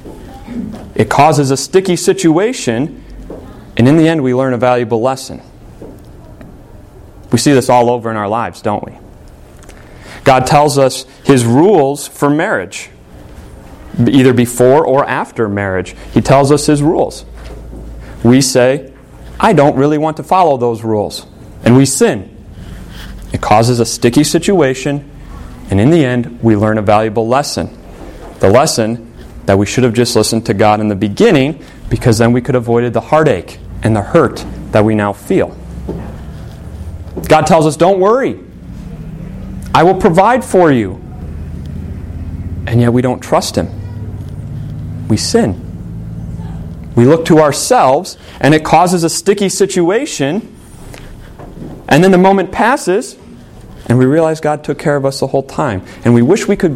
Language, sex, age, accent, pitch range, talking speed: English, male, 30-49, American, 100-145 Hz, 155 wpm